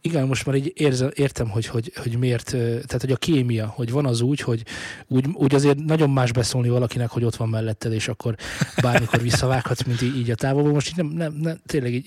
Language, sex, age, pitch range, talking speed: Hungarian, male, 20-39, 120-150 Hz, 230 wpm